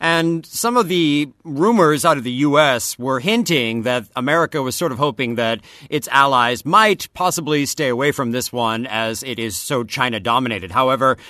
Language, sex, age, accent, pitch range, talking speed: English, male, 40-59, American, 130-175 Hz, 175 wpm